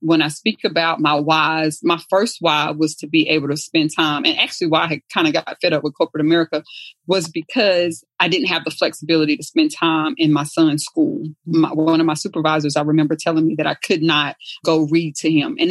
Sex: female